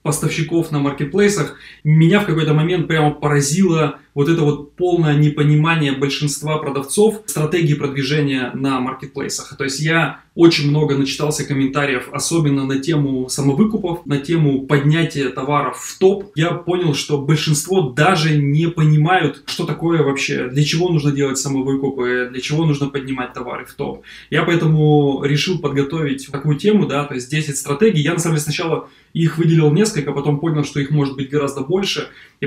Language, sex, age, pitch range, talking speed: Russian, male, 20-39, 140-165 Hz, 160 wpm